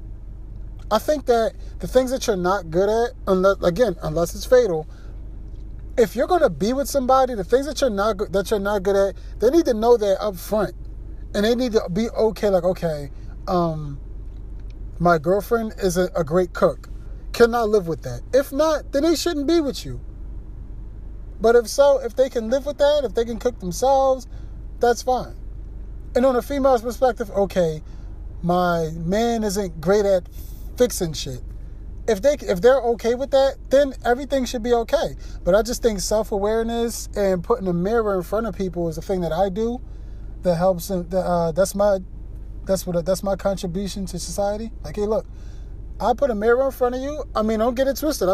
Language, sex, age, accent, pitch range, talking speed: English, male, 30-49, American, 180-245 Hz, 190 wpm